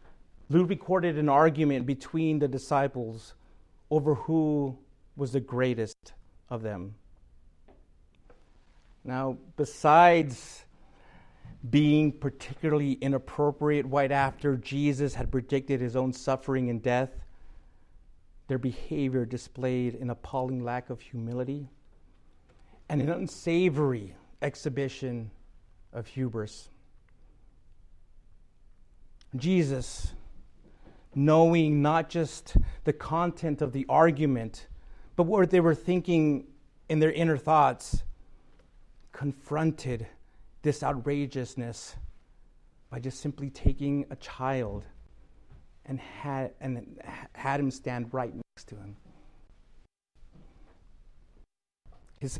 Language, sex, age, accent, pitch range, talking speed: English, male, 50-69, American, 115-145 Hz, 95 wpm